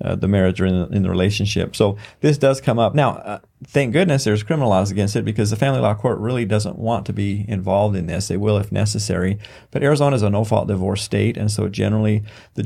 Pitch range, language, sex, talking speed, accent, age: 100-115 Hz, English, male, 240 wpm, American, 40-59